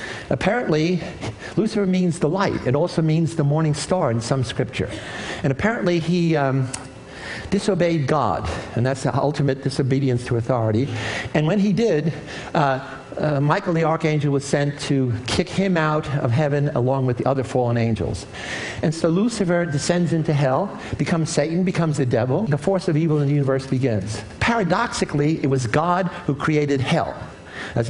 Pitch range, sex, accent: 130-170 Hz, male, American